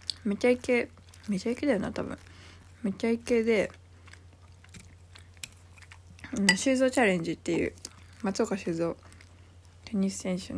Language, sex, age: Japanese, female, 20-39